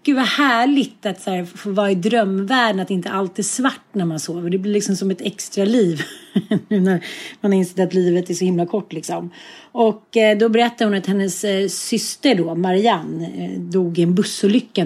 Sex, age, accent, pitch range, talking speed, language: female, 30-49, native, 185-220 Hz, 210 wpm, Swedish